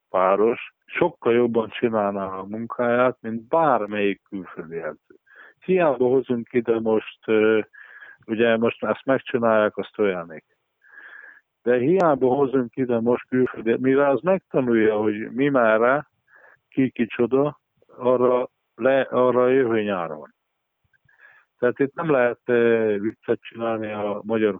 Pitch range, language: 110-125 Hz, Hungarian